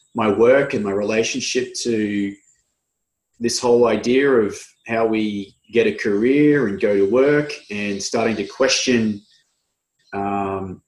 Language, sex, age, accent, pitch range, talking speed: English, male, 30-49, Australian, 105-130 Hz, 130 wpm